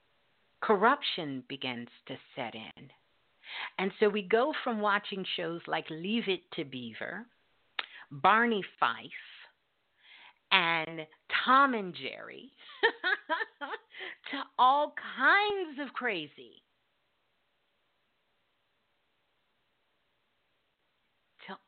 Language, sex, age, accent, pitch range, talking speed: English, female, 50-69, American, 170-255 Hz, 80 wpm